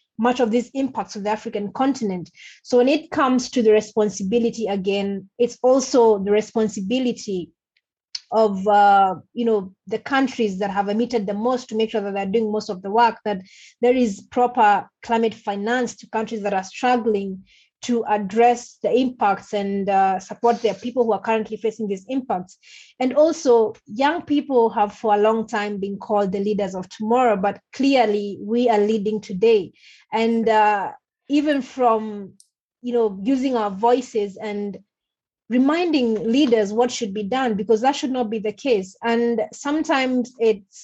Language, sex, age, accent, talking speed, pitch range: English, female, 20-39, South African, 160 wpm, 205-240 Hz